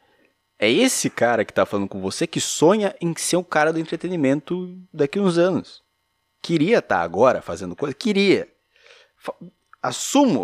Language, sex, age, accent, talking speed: Portuguese, male, 30-49, Brazilian, 160 wpm